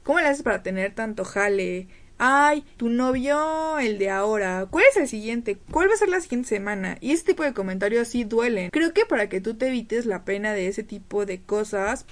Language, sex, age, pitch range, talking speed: Spanish, female, 20-39, 200-250 Hz, 225 wpm